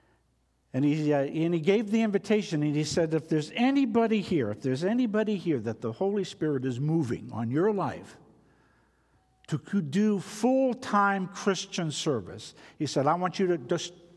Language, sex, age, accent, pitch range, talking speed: English, male, 60-79, American, 130-185 Hz, 165 wpm